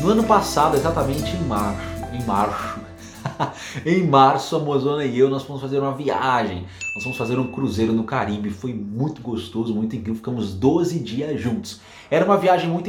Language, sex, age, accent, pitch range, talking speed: Portuguese, male, 30-49, Brazilian, 120-170 Hz, 180 wpm